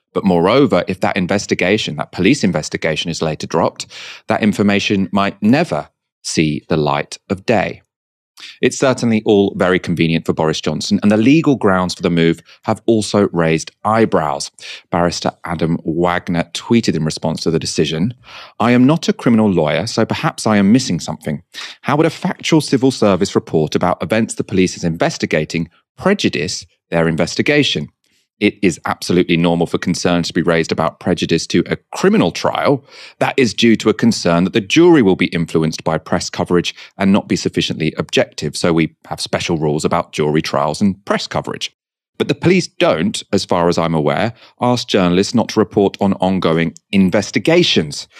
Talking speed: 175 wpm